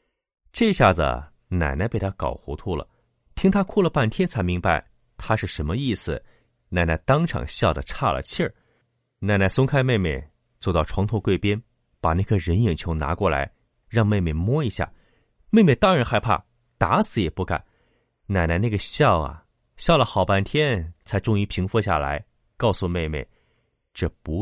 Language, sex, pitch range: Chinese, male, 85-120 Hz